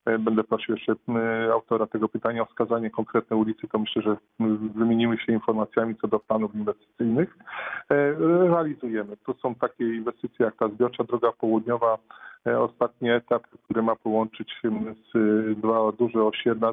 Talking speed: 145 wpm